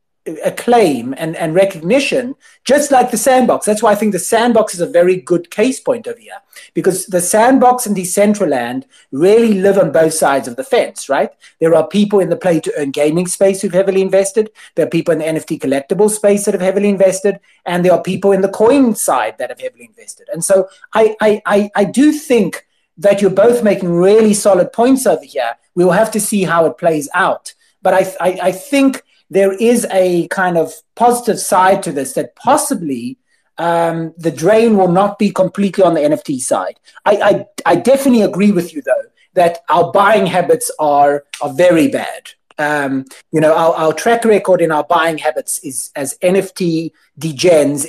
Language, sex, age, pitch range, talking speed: English, male, 30-49, 170-220 Hz, 200 wpm